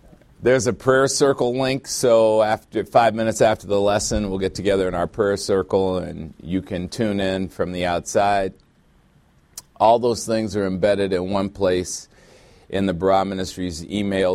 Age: 40-59